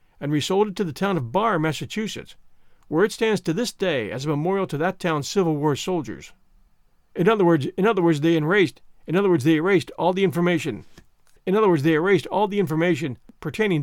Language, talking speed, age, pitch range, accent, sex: English, 215 wpm, 50-69, 155-200 Hz, American, male